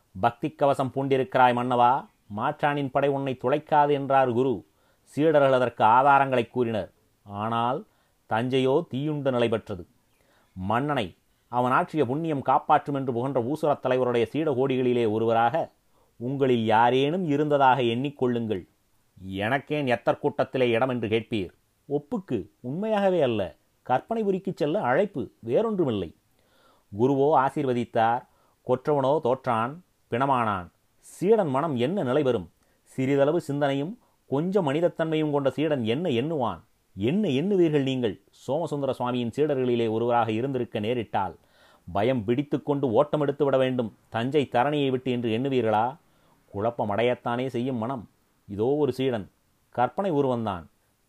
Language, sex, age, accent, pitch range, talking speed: Tamil, male, 30-49, native, 115-145 Hz, 105 wpm